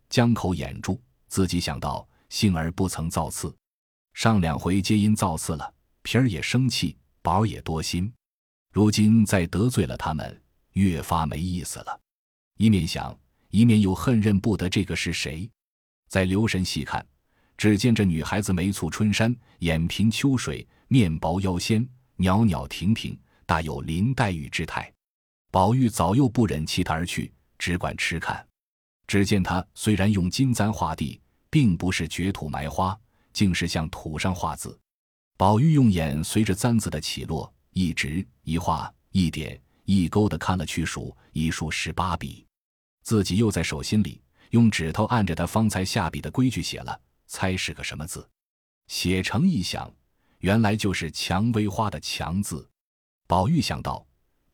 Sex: male